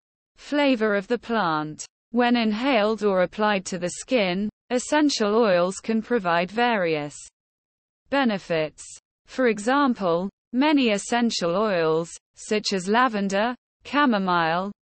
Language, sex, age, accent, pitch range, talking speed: English, female, 20-39, British, 185-245 Hz, 105 wpm